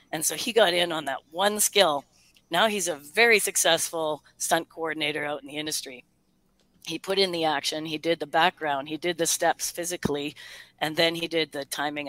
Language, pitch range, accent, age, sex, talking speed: English, 145-170 Hz, American, 30-49, female, 200 wpm